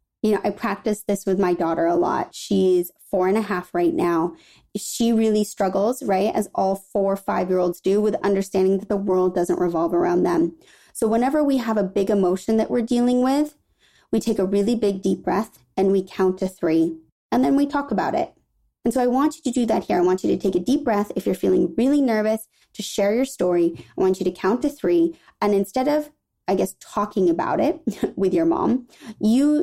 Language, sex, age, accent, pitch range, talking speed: English, female, 20-39, American, 185-245 Hz, 225 wpm